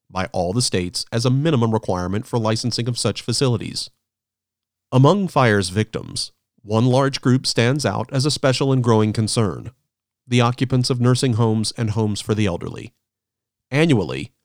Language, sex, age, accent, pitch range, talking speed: English, male, 40-59, American, 110-130 Hz, 160 wpm